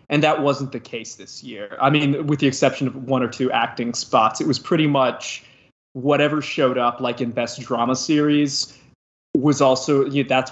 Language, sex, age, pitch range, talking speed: English, male, 20-39, 120-140 Hz, 190 wpm